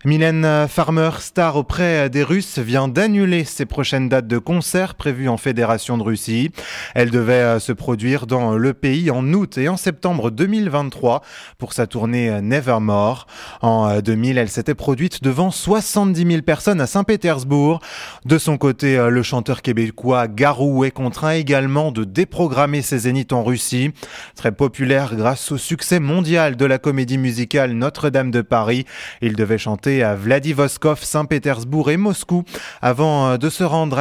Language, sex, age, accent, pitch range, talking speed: English, male, 20-39, French, 120-160 Hz, 155 wpm